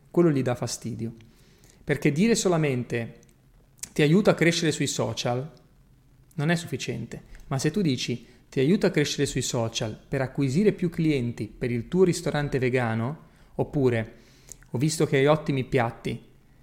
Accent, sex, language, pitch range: native, male, Italian, 120-155 Hz